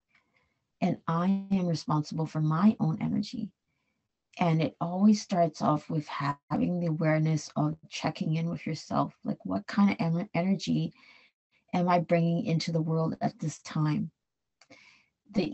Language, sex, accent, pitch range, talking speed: English, female, American, 155-200 Hz, 145 wpm